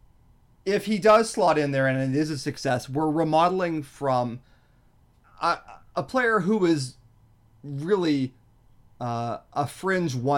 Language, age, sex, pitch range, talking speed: English, 30-49, male, 115-155 Hz, 135 wpm